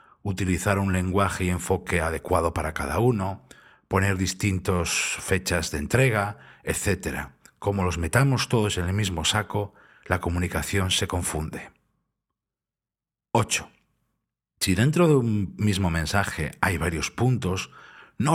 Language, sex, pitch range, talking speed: Spanish, male, 85-110 Hz, 125 wpm